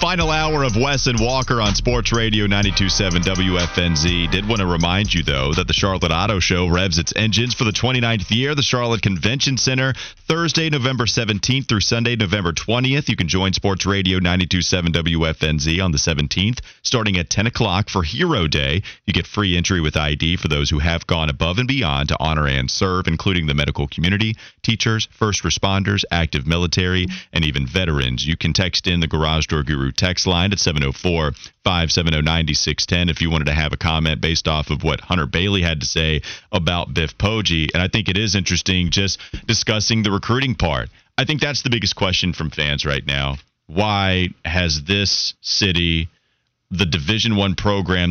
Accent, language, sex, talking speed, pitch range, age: American, English, male, 185 wpm, 80-110 Hz, 30-49